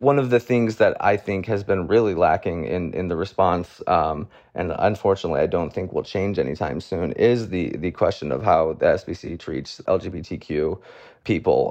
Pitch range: 95-110 Hz